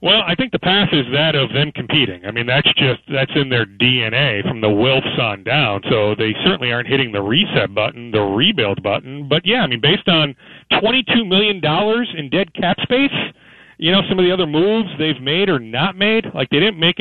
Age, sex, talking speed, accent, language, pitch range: 40-59, male, 220 wpm, American, English, 125-165 Hz